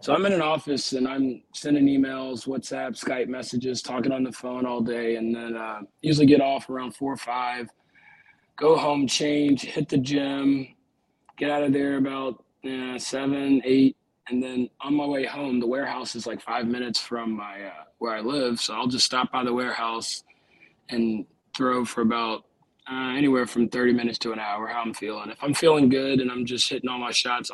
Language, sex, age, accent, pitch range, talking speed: English, male, 20-39, American, 120-140 Hz, 205 wpm